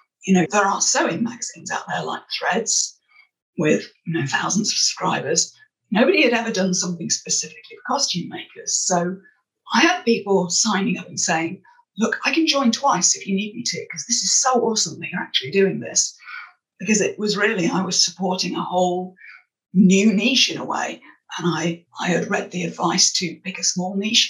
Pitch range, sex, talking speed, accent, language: 180-235 Hz, female, 195 wpm, British, English